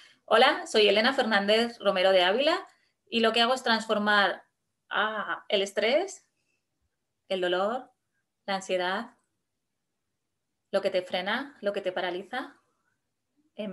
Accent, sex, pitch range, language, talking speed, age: Spanish, female, 195-260 Hz, Spanish, 125 wpm, 20-39